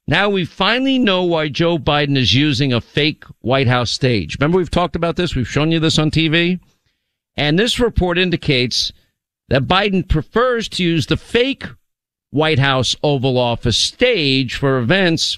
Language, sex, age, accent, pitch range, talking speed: English, male, 50-69, American, 120-160 Hz, 170 wpm